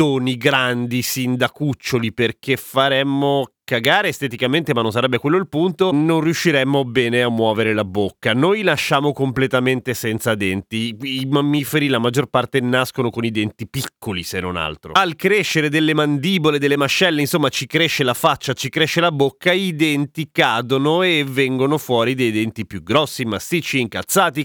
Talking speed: 160 wpm